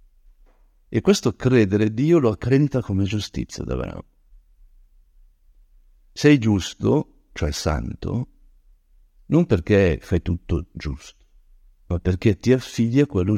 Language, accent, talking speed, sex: Italian, native, 110 wpm, male